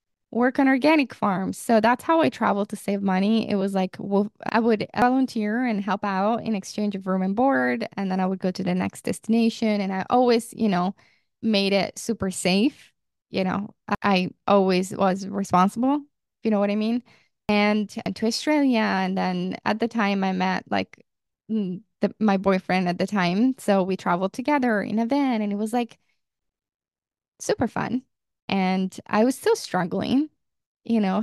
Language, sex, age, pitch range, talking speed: English, female, 10-29, 190-235 Hz, 185 wpm